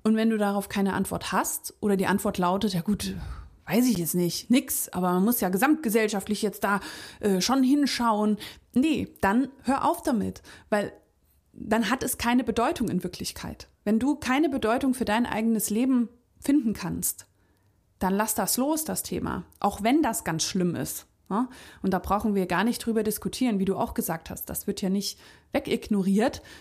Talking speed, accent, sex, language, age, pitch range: 185 wpm, German, female, German, 30-49, 195-245 Hz